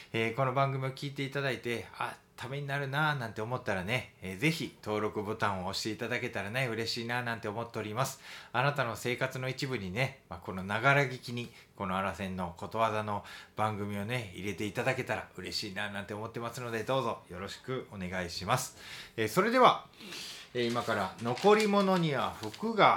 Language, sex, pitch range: Japanese, male, 105-145 Hz